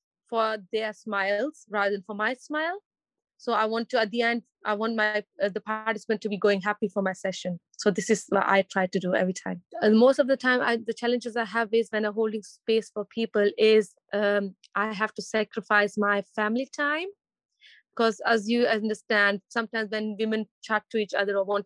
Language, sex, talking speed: English, female, 215 wpm